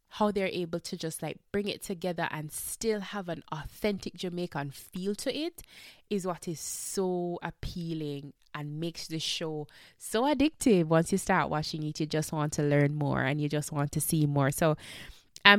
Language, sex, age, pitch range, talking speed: English, female, 20-39, 160-235 Hz, 190 wpm